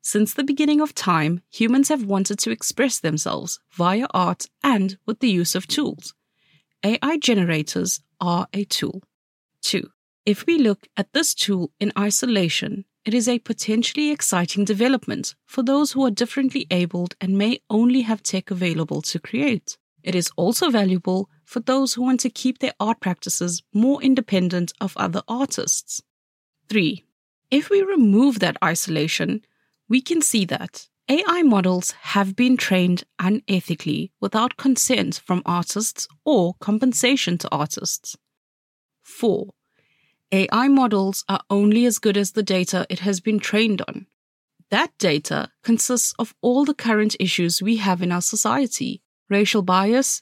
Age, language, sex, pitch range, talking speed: 30-49, English, female, 185-250 Hz, 150 wpm